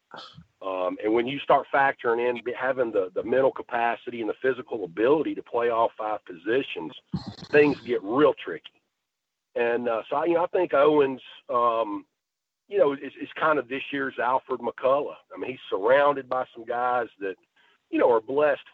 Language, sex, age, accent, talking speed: English, male, 50-69, American, 180 wpm